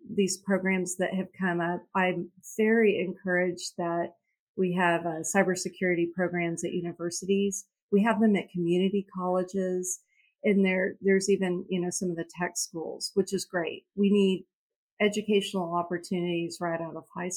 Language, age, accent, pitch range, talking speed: English, 40-59, American, 175-200 Hz, 155 wpm